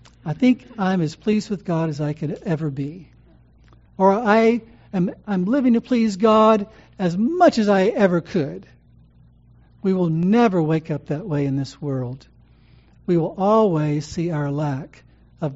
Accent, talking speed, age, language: American, 165 wpm, 60-79, English